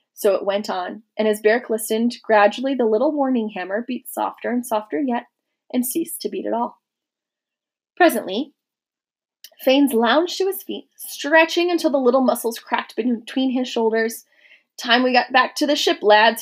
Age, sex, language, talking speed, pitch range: 20-39, female, English, 170 wpm, 215-290 Hz